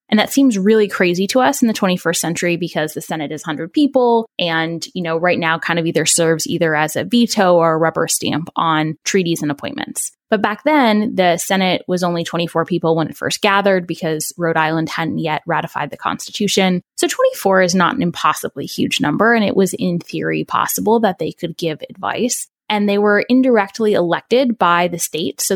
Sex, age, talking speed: female, 10-29, 205 wpm